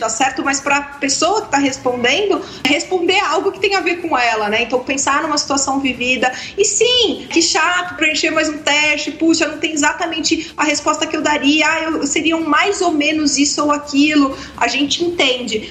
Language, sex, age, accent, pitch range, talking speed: Portuguese, female, 30-49, Brazilian, 255-320 Hz, 205 wpm